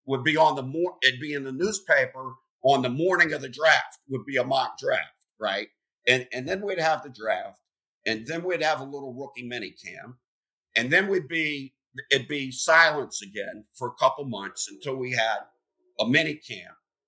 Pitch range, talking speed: 115-145 Hz, 195 wpm